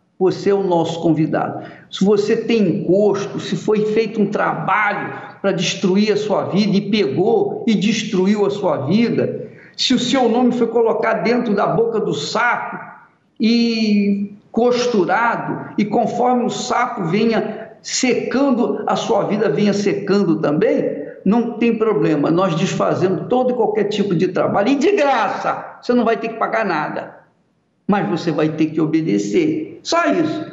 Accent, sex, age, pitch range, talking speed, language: Brazilian, male, 60-79, 180-240 Hz, 155 wpm, Portuguese